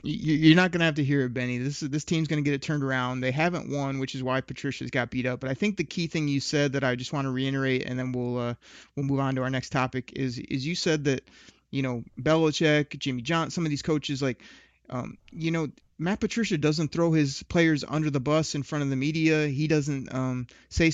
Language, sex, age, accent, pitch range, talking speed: English, male, 30-49, American, 135-170 Hz, 255 wpm